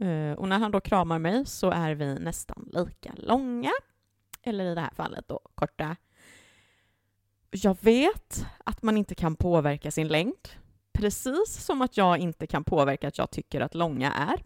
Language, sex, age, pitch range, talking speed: Swedish, female, 30-49, 140-185 Hz, 170 wpm